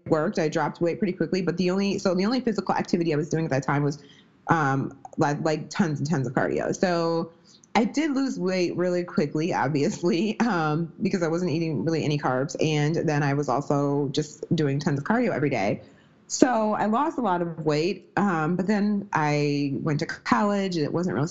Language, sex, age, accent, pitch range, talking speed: English, female, 30-49, American, 155-200 Hz, 210 wpm